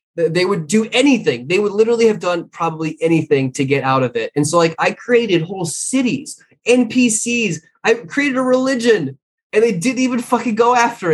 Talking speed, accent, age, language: 190 wpm, American, 20-39, English